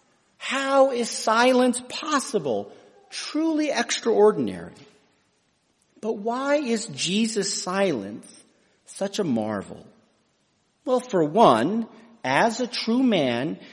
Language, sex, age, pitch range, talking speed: English, male, 50-69, 180-265 Hz, 90 wpm